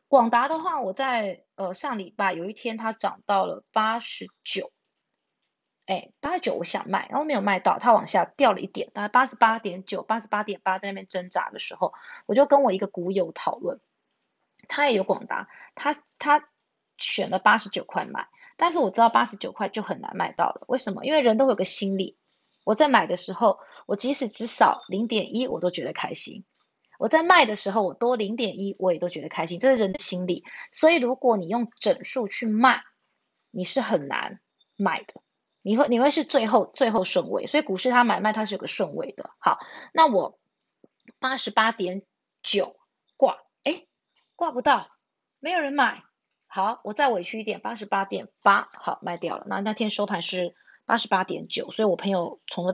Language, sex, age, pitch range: Chinese, female, 20-39, 195-265 Hz